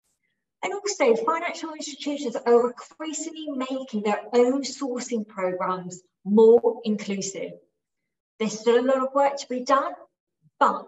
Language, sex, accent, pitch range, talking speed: English, female, British, 200-270 Hz, 125 wpm